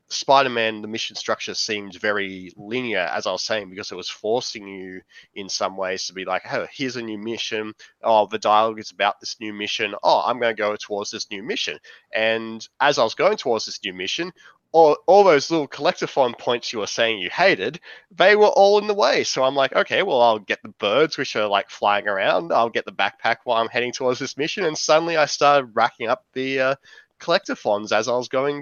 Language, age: English, 20-39